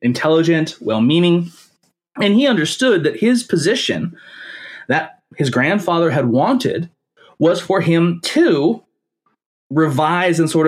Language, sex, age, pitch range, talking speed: English, male, 30-49, 130-175 Hz, 110 wpm